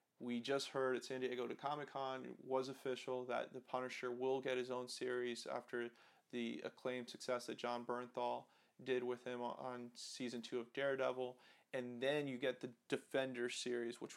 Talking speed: 180 wpm